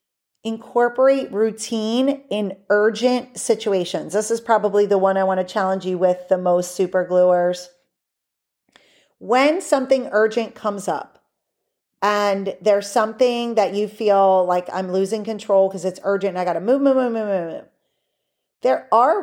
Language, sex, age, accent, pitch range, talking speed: English, female, 40-59, American, 190-245 Hz, 155 wpm